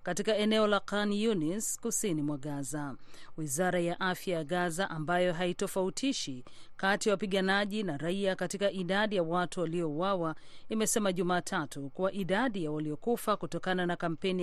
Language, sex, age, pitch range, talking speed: Swahili, female, 40-59, 170-210 Hz, 140 wpm